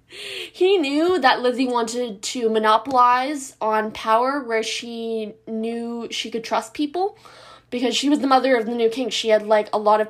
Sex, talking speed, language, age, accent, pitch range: female, 185 wpm, English, 10-29, American, 220-280 Hz